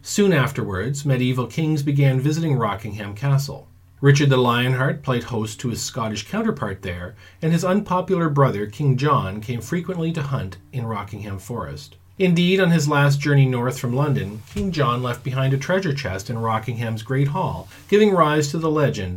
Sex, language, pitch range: male, English, 115-150 Hz